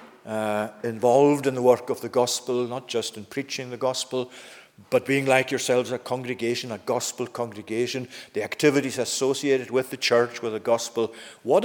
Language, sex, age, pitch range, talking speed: English, male, 50-69, 115-140 Hz, 170 wpm